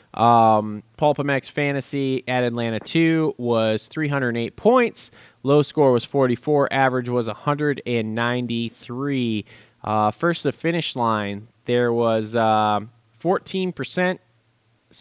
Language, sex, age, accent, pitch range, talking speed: English, male, 20-39, American, 115-145 Hz, 105 wpm